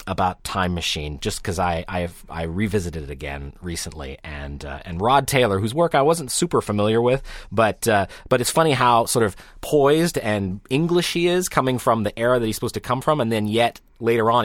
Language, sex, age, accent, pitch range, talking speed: English, male, 30-49, American, 90-120 Hz, 215 wpm